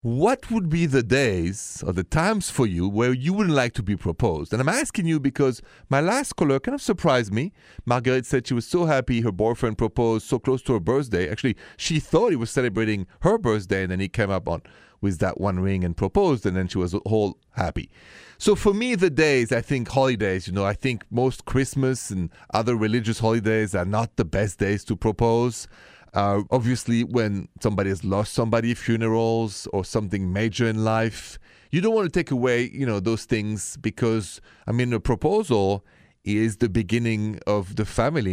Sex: male